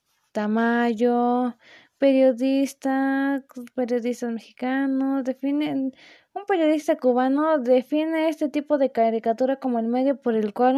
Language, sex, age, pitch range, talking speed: Spanish, female, 20-39, 230-275 Hz, 105 wpm